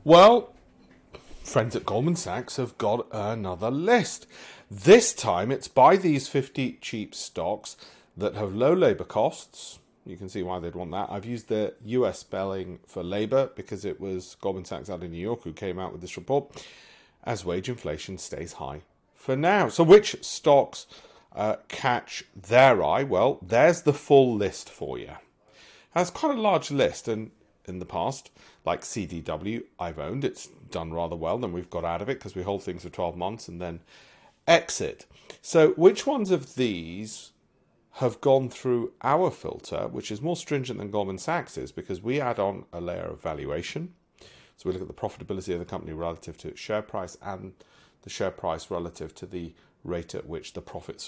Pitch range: 90-140 Hz